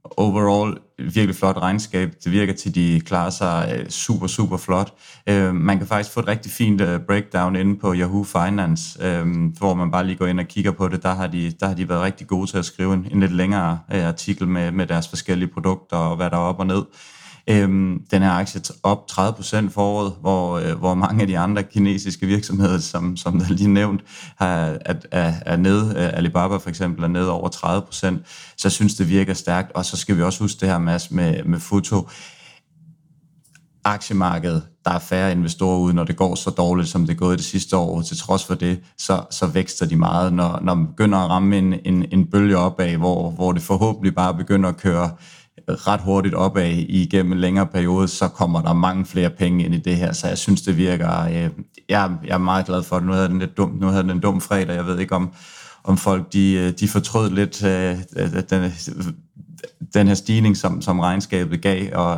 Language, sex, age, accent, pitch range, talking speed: Danish, male, 30-49, native, 90-100 Hz, 210 wpm